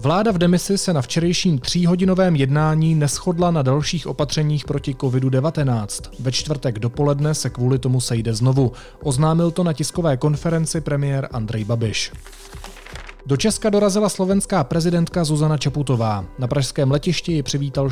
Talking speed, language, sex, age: 140 wpm, Czech, male, 30-49